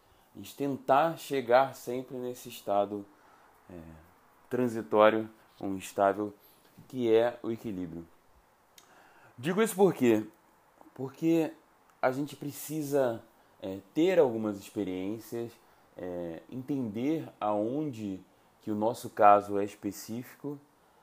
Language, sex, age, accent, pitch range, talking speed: Portuguese, male, 20-39, Brazilian, 105-125 Hz, 95 wpm